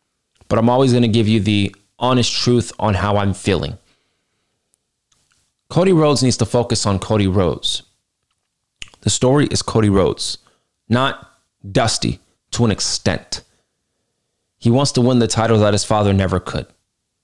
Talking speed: 150 wpm